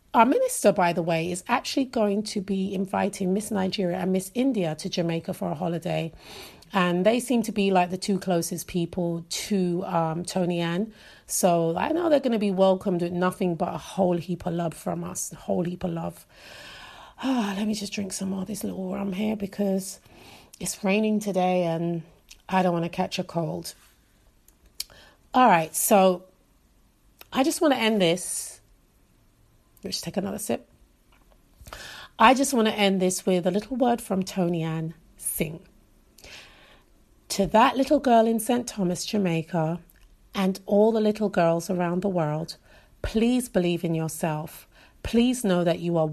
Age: 30-49